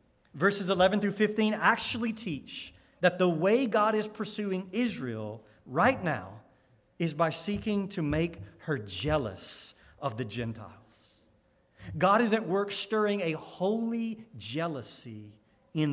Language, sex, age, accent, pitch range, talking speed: English, male, 40-59, American, 155-225 Hz, 130 wpm